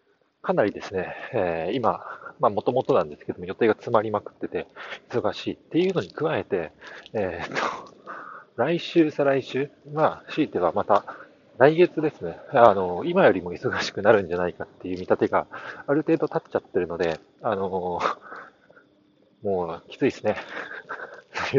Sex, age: male, 40-59